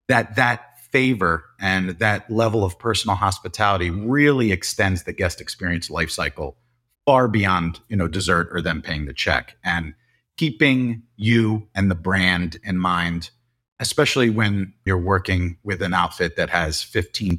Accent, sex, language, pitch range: American, male, English, 90-115 Hz